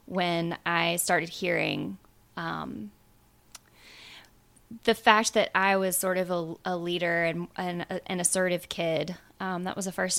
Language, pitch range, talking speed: English, 175-200 Hz, 145 wpm